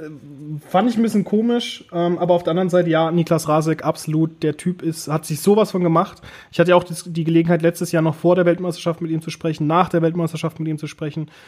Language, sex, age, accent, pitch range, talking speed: German, male, 30-49, German, 160-185 Hz, 235 wpm